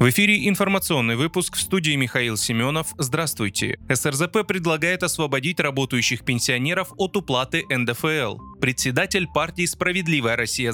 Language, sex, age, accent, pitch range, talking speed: Russian, male, 20-39, native, 125-180 Hz, 115 wpm